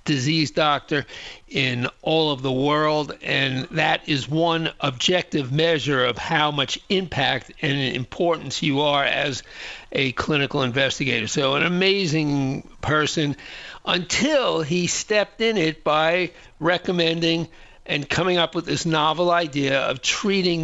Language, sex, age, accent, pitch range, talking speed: English, male, 50-69, American, 145-185 Hz, 130 wpm